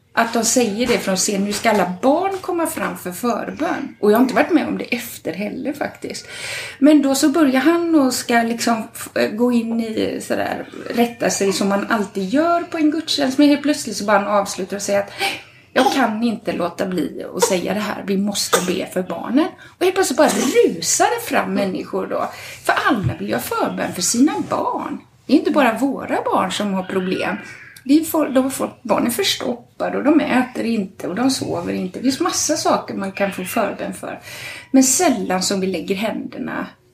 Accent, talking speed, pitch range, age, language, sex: native, 205 wpm, 205-305 Hz, 30-49, Swedish, female